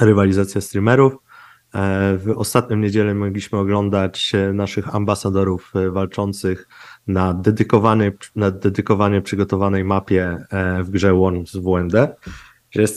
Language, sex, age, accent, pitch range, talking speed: Polish, male, 20-39, native, 95-110 Hz, 95 wpm